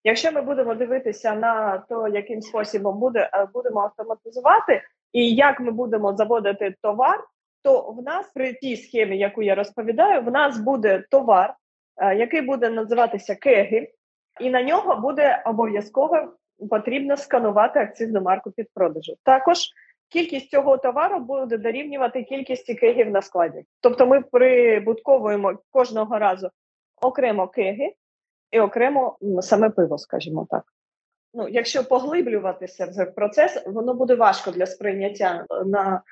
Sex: female